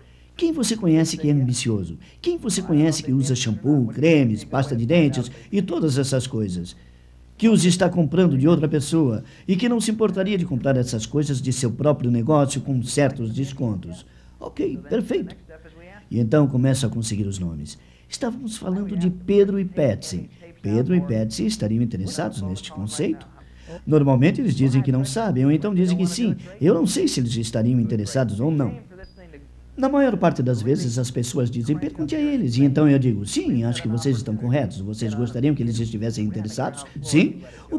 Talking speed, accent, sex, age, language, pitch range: 180 wpm, Brazilian, male, 50-69, Portuguese, 115-170 Hz